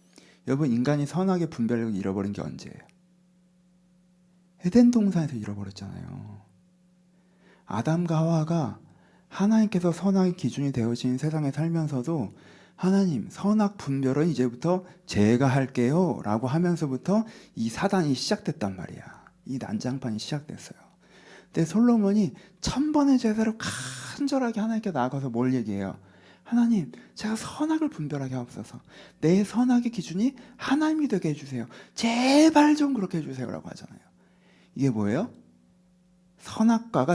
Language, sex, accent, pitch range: Korean, male, native, 125-200 Hz